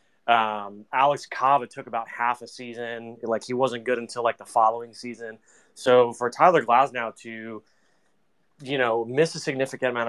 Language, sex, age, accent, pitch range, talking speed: English, male, 20-39, American, 115-140 Hz, 165 wpm